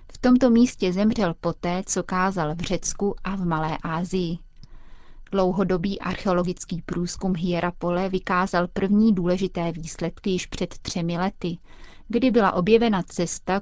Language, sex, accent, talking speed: Czech, female, native, 130 wpm